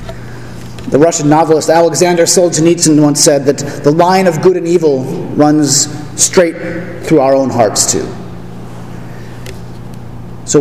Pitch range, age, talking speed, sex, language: 110-175 Hz, 30-49, 125 wpm, male, English